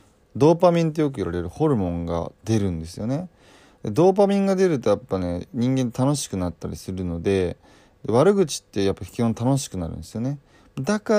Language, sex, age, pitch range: Japanese, male, 20-39, 95-140 Hz